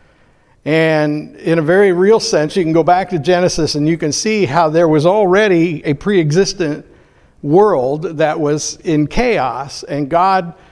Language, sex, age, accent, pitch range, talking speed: English, male, 60-79, American, 145-170 Hz, 160 wpm